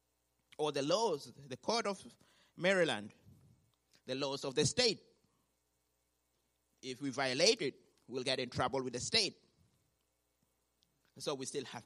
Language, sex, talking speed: English, male, 135 wpm